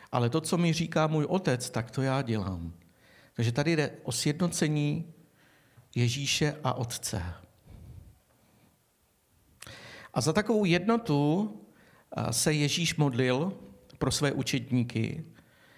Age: 50-69